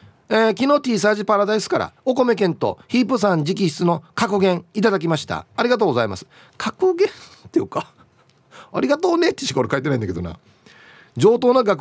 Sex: male